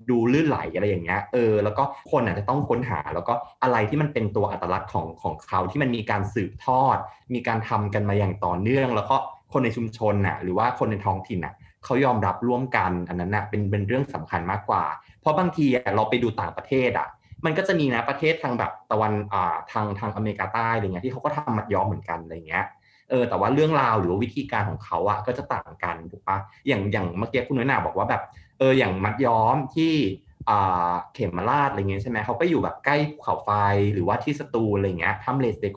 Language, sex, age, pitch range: Thai, male, 20-39, 100-130 Hz